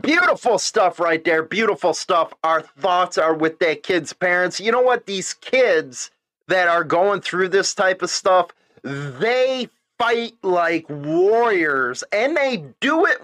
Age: 30-49